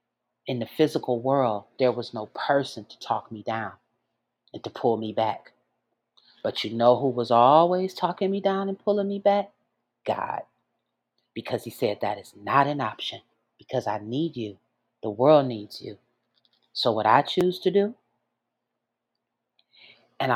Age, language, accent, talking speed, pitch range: 40-59, English, American, 160 wpm, 120-175 Hz